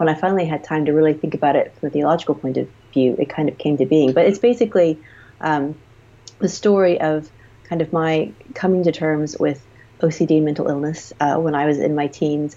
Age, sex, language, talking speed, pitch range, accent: 30-49, female, English, 220 wpm, 140-170 Hz, American